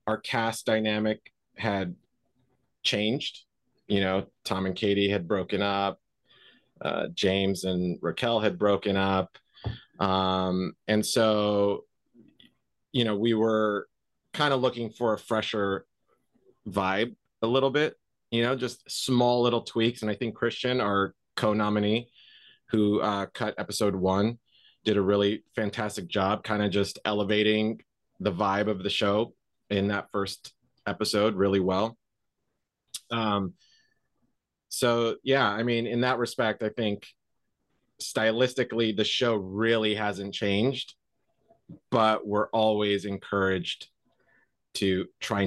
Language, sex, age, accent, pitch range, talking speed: English, male, 30-49, American, 100-115 Hz, 125 wpm